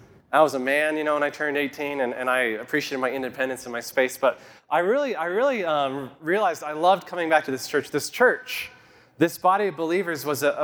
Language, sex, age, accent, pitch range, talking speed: English, male, 30-49, American, 140-195 Hz, 230 wpm